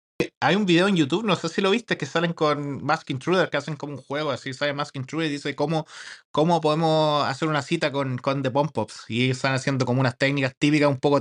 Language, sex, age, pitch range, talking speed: Spanish, male, 20-39, 135-165 Hz, 245 wpm